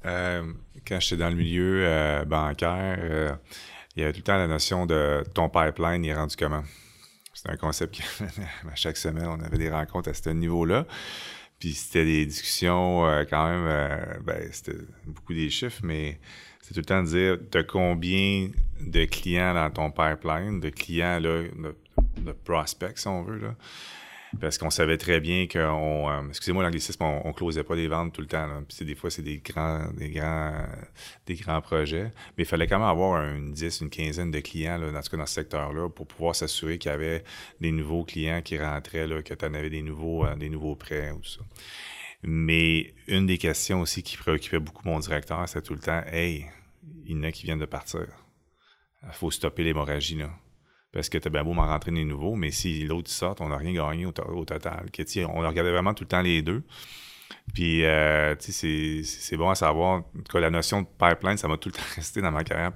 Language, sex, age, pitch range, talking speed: English, male, 30-49, 75-90 Hz, 215 wpm